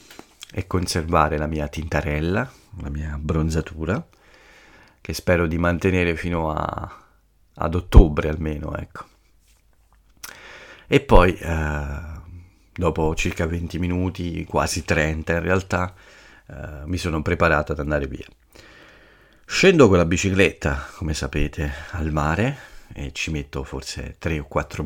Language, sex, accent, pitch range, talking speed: Italian, male, native, 80-90 Hz, 125 wpm